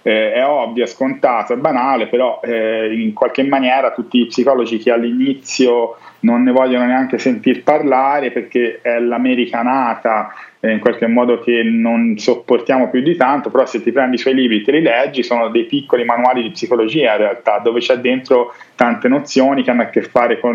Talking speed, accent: 195 wpm, native